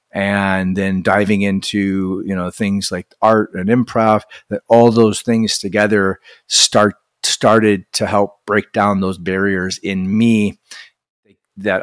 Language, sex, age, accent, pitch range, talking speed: English, male, 30-49, American, 100-120 Hz, 135 wpm